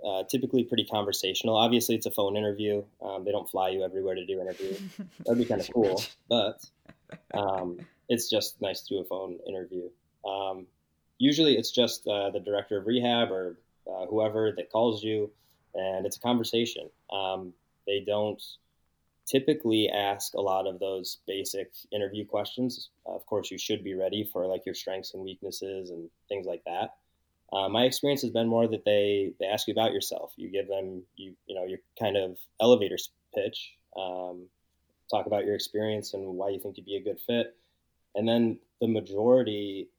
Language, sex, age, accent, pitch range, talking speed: English, male, 20-39, American, 95-120 Hz, 185 wpm